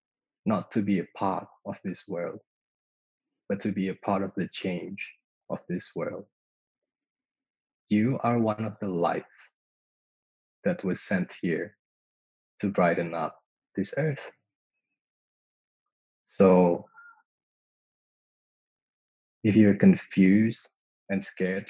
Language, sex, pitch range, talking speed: English, male, 90-120 Hz, 110 wpm